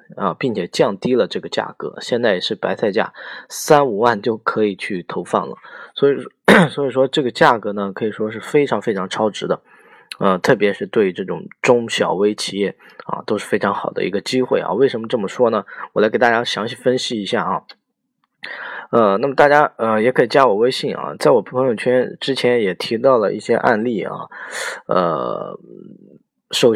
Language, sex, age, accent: Chinese, male, 20-39, native